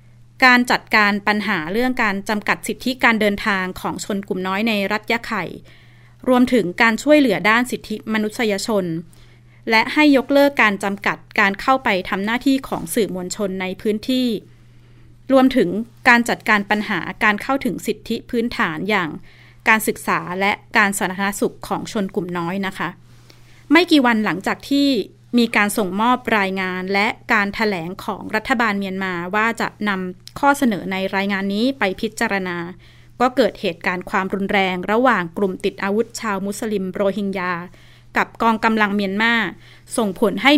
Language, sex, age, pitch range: Thai, female, 20-39, 185-235 Hz